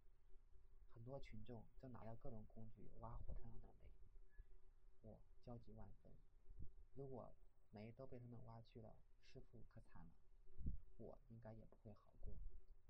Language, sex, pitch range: Chinese, male, 95-115 Hz